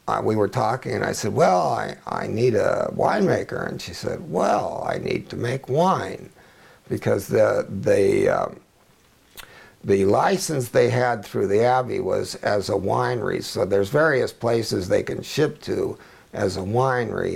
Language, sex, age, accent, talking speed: English, male, 60-79, American, 165 wpm